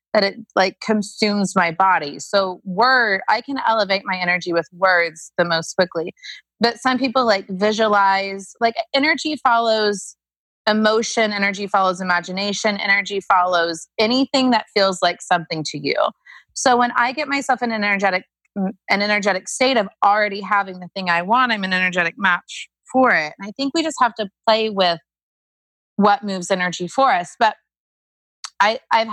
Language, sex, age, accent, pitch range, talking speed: English, female, 30-49, American, 175-220 Hz, 165 wpm